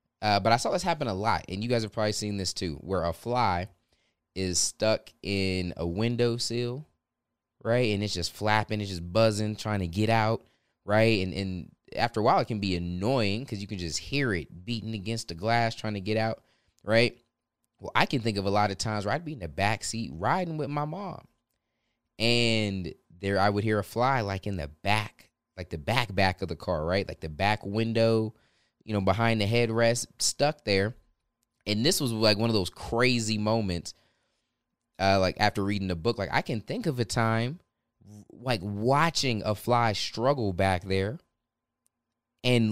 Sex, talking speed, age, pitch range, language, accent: male, 200 wpm, 20-39, 95-120 Hz, English, American